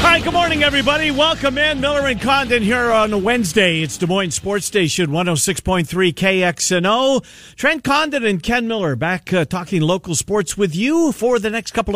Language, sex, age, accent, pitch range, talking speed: English, male, 50-69, American, 135-195 Hz, 180 wpm